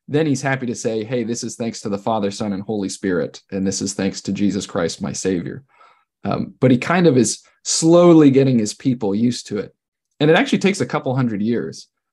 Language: English